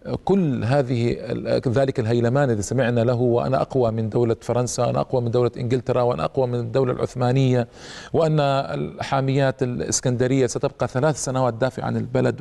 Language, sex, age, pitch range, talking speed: Arabic, male, 40-59, 120-140 Hz, 150 wpm